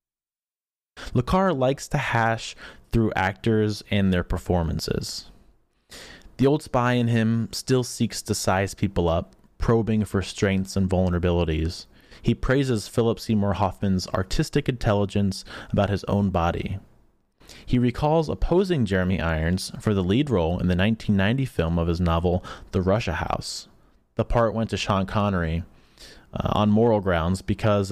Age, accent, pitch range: 30-49, American, 90-120 Hz